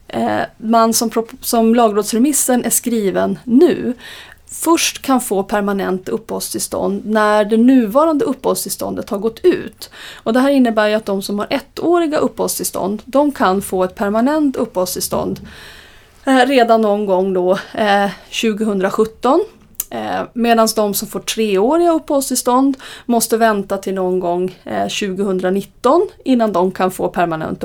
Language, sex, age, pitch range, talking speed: Swedish, female, 30-49, 200-240 Hz, 115 wpm